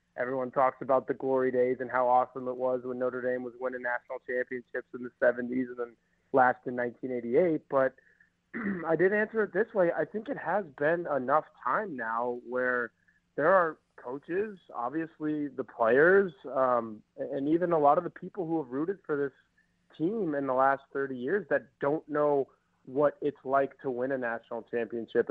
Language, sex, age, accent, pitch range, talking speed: English, male, 30-49, American, 125-160 Hz, 185 wpm